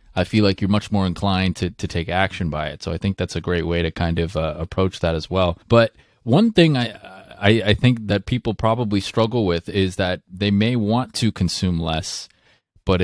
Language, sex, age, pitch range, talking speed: English, male, 30-49, 85-110 Hz, 225 wpm